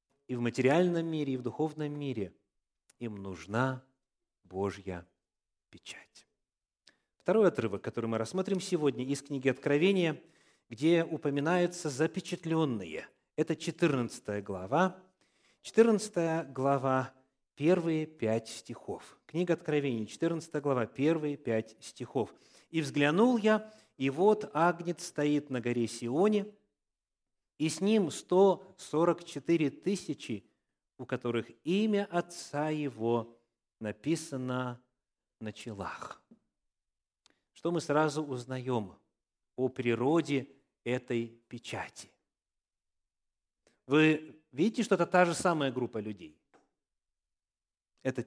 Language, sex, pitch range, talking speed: Russian, male, 120-165 Hz, 105 wpm